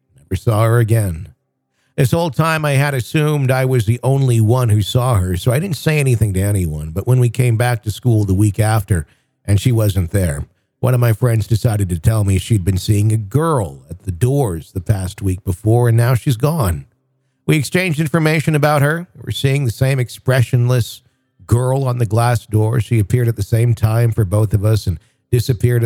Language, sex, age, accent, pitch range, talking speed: English, male, 50-69, American, 105-130 Hz, 210 wpm